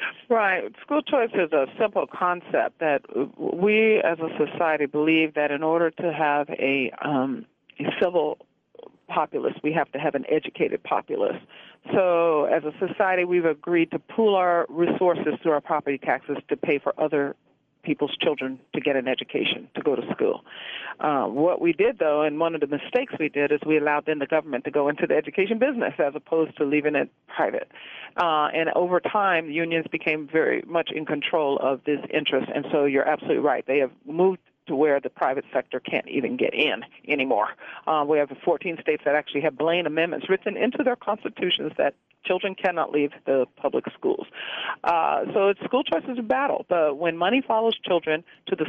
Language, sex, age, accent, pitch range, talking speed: English, female, 50-69, American, 150-185 Hz, 190 wpm